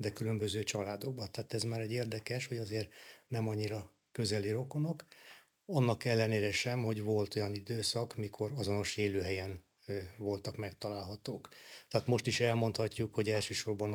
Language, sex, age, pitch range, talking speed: Hungarian, male, 60-79, 100-115 Hz, 140 wpm